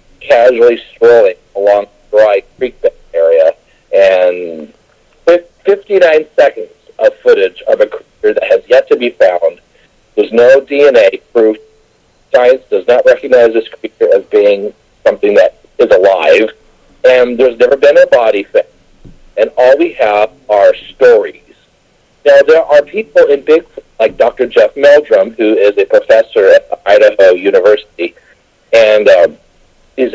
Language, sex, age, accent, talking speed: English, male, 50-69, American, 140 wpm